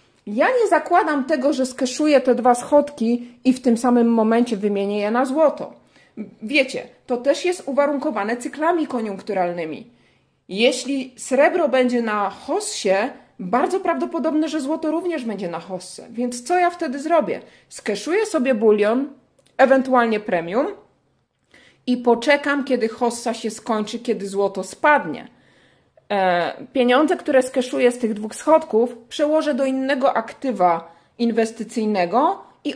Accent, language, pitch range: native, Polish, 225-285 Hz